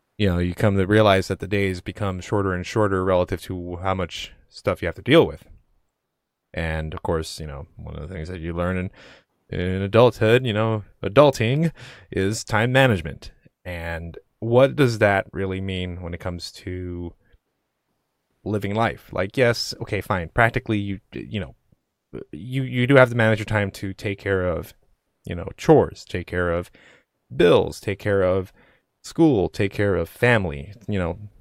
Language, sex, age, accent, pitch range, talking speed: English, male, 20-39, American, 90-120 Hz, 180 wpm